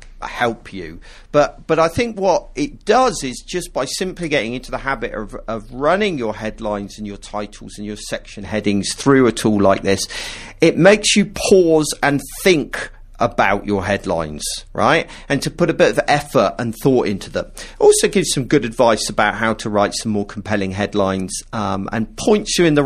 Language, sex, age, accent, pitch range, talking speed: English, male, 40-59, British, 105-155 Hz, 195 wpm